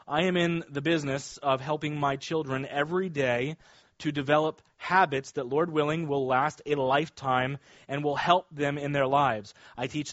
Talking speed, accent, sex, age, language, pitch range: 180 wpm, American, male, 30-49, English, 145-195 Hz